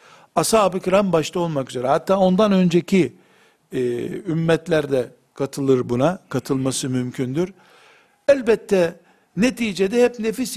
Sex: male